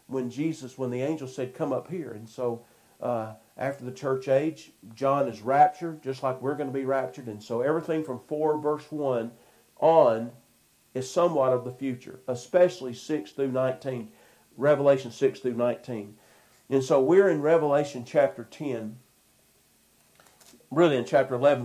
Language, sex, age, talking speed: English, male, 50-69, 160 wpm